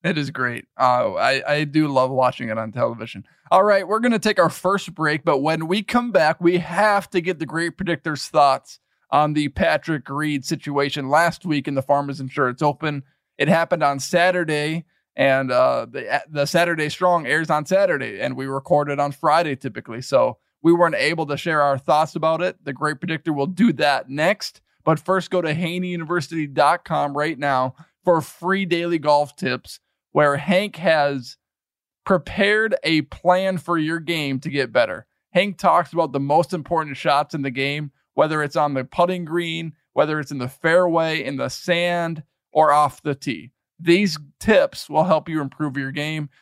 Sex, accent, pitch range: male, American, 140-175 Hz